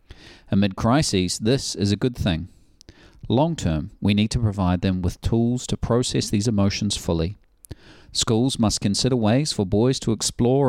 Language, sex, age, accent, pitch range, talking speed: English, male, 40-59, Australian, 95-120 Hz, 165 wpm